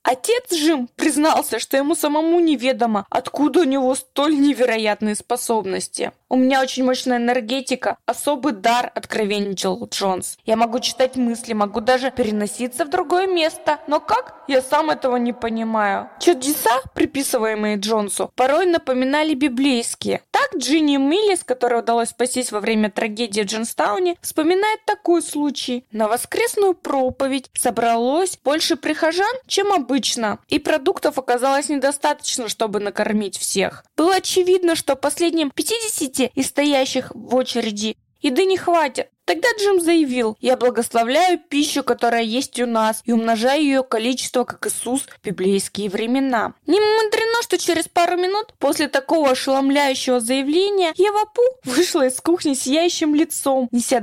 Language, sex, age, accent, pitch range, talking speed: Russian, female, 20-39, native, 235-320 Hz, 140 wpm